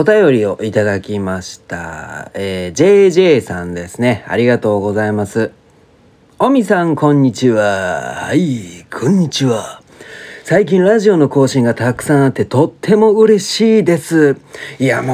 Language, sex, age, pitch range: Japanese, male, 40-59, 105-165 Hz